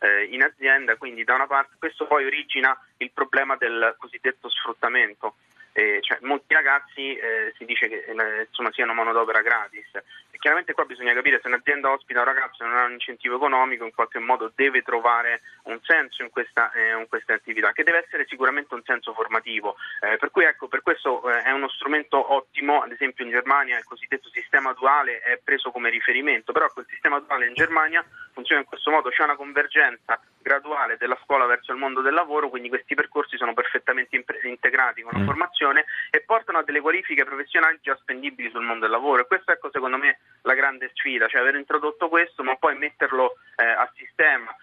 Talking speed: 200 wpm